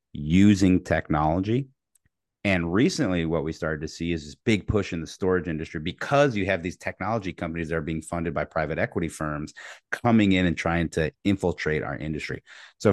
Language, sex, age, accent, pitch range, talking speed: English, male, 30-49, American, 80-100 Hz, 185 wpm